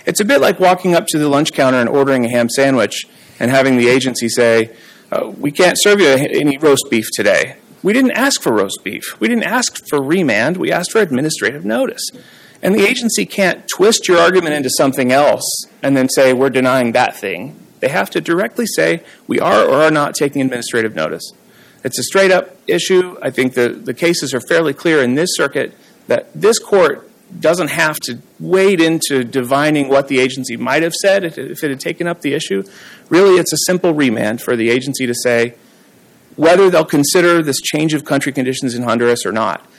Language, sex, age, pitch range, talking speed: English, male, 40-59, 130-185 Hz, 200 wpm